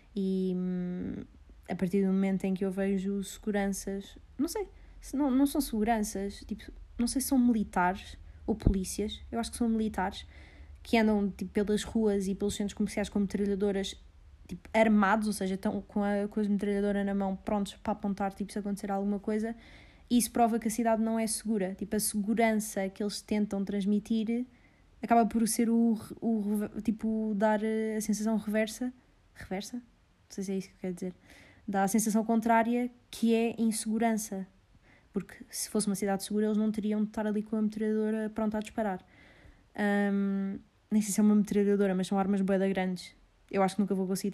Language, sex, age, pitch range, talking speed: Portuguese, female, 20-39, 195-220 Hz, 190 wpm